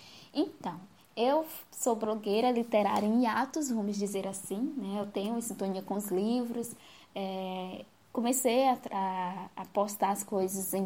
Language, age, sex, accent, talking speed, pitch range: Portuguese, 10-29, female, Brazilian, 140 wpm, 210-255 Hz